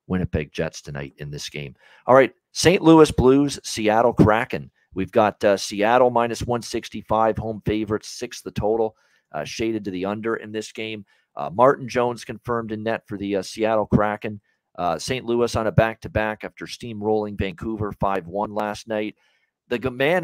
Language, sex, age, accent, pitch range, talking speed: English, male, 40-59, American, 105-125 Hz, 170 wpm